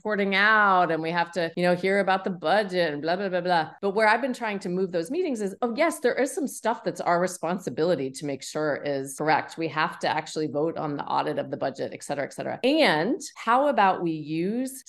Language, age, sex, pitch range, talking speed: English, 30-49, female, 155-210 Hz, 245 wpm